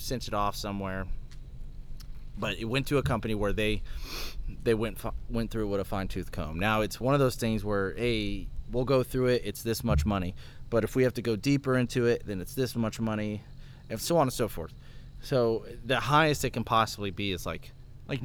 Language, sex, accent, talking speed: English, male, American, 220 wpm